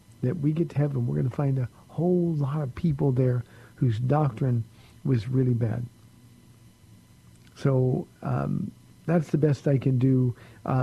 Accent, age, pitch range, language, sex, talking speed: American, 50-69, 120-145 Hz, English, male, 160 wpm